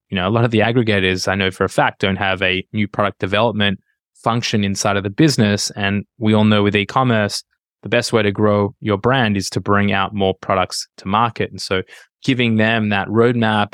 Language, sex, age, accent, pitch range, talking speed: English, male, 20-39, Australian, 100-115 Hz, 220 wpm